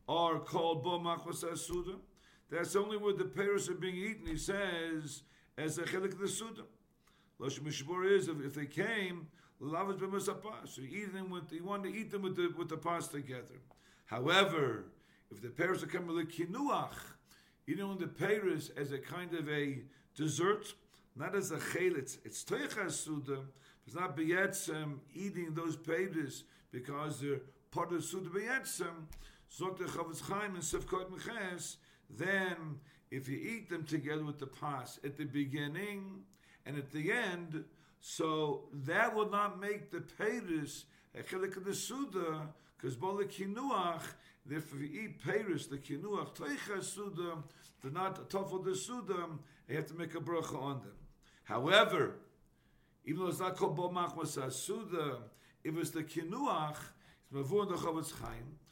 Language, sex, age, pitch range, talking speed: English, male, 50-69, 150-190 Hz, 160 wpm